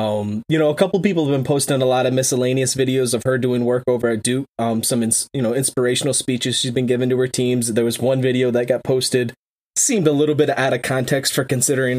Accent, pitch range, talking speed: American, 115-135 Hz, 250 wpm